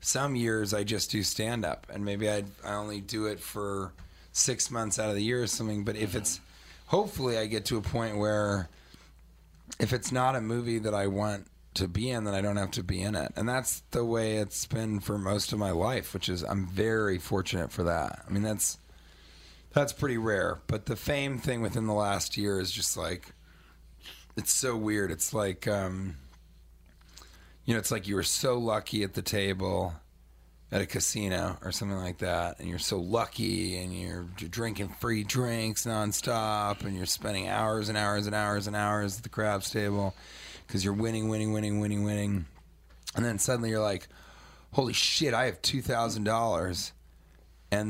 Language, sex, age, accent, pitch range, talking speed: English, male, 30-49, American, 90-110 Hz, 195 wpm